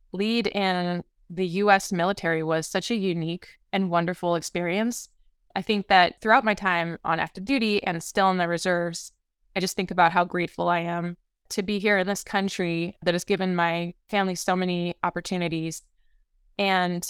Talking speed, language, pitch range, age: 170 wpm, English, 175-200 Hz, 20-39